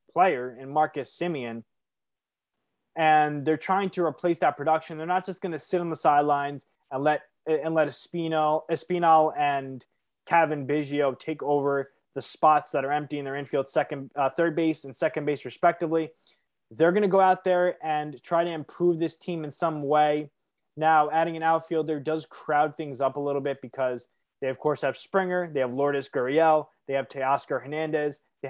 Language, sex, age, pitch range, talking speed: English, male, 20-39, 140-165 Hz, 185 wpm